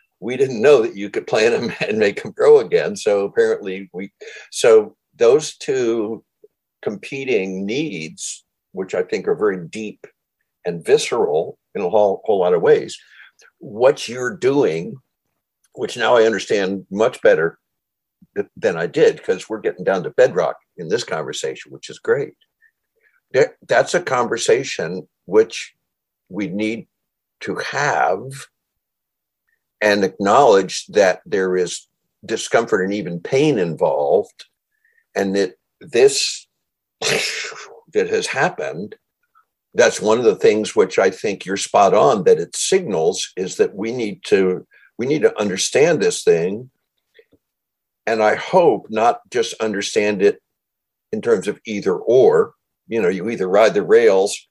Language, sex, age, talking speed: English, male, 60-79, 140 wpm